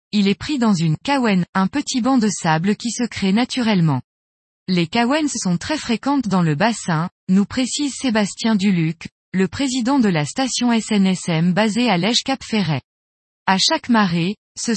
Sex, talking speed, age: female, 170 wpm, 20-39